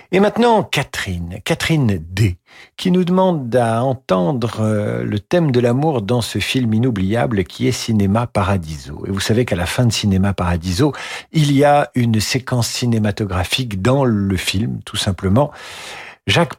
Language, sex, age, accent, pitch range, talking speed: French, male, 50-69, French, 100-130 Hz, 155 wpm